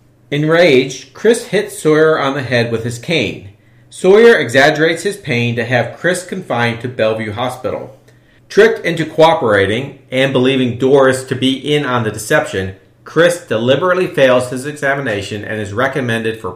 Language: English